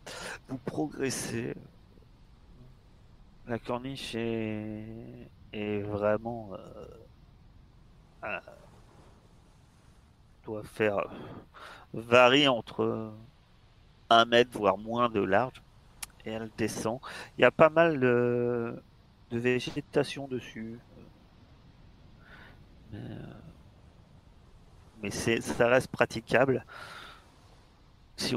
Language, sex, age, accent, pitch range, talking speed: French, male, 40-59, French, 105-125 Hz, 80 wpm